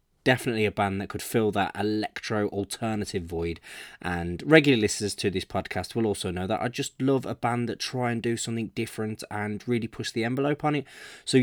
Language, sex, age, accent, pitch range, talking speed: English, male, 20-39, British, 110-145 Hz, 200 wpm